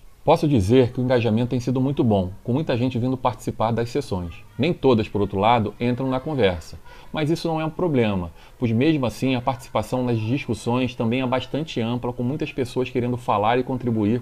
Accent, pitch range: Brazilian, 115-135 Hz